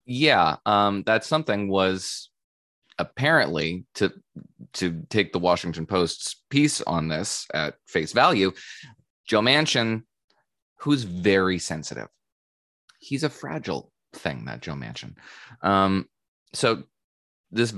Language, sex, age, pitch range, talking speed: English, male, 20-39, 85-110 Hz, 110 wpm